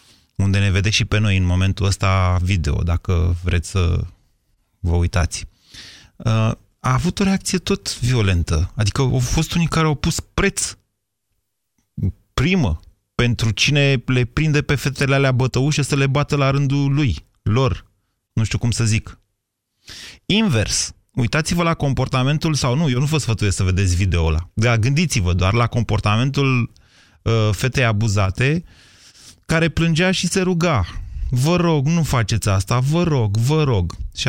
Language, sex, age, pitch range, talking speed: Romanian, male, 30-49, 95-135 Hz, 150 wpm